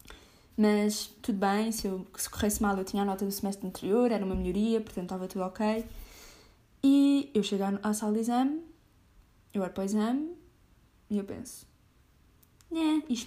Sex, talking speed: female, 170 wpm